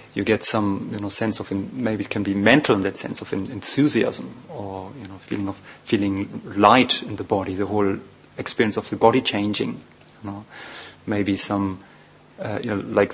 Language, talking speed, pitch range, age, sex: English, 190 wpm, 100-120 Hz, 30-49, male